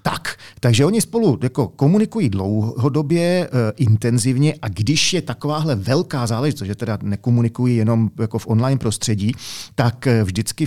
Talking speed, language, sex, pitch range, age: 135 wpm, Czech, male, 105-130 Hz, 40-59